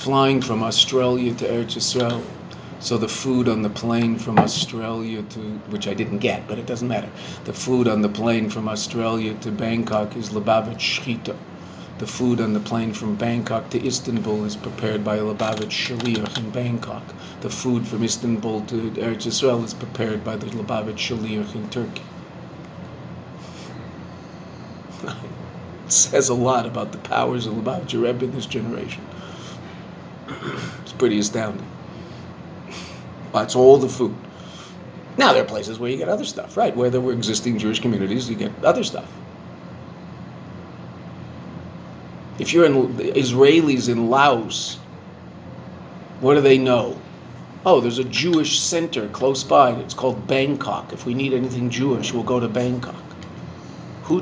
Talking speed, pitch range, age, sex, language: 150 wpm, 110-125 Hz, 40-59, male, English